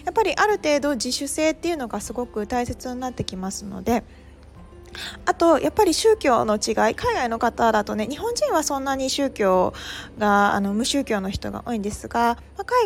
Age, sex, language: 20-39, female, Japanese